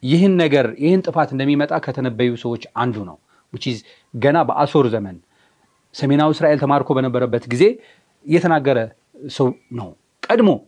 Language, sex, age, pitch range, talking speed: Amharic, male, 40-59, 125-175 Hz, 120 wpm